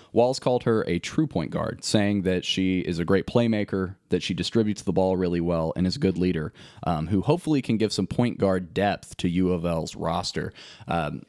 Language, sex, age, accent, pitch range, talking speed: English, male, 20-39, American, 90-125 Hz, 205 wpm